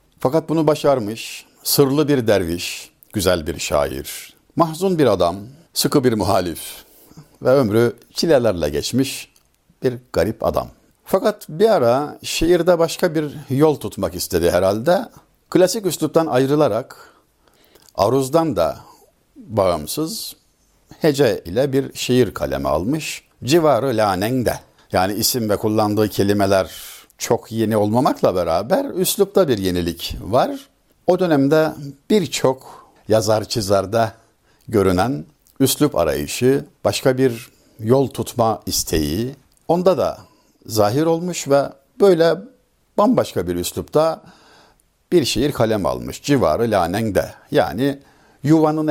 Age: 60-79